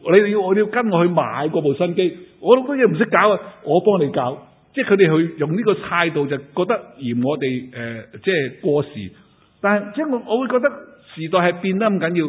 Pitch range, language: 145-205 Hz, Chinese